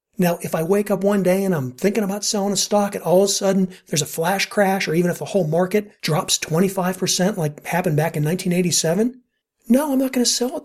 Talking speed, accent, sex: 240 wpm, American, male